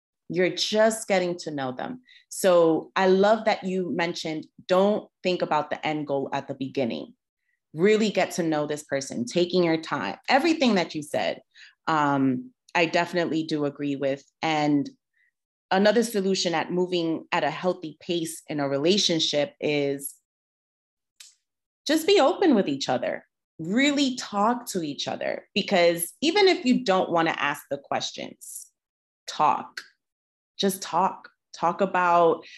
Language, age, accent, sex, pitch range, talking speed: English, 30-49, American, female, 145-195 Hz, 145 wpm